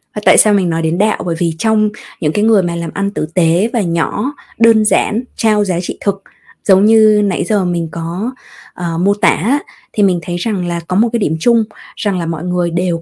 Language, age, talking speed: Vietnamese, 20-39, 225 wpm